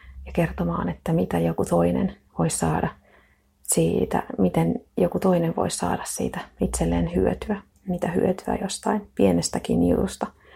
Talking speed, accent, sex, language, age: 125 wpm, native, female, Finnish, 30-49